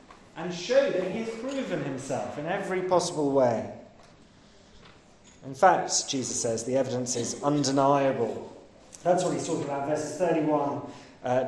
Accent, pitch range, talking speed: British, 140-200 Hz, 140 wpm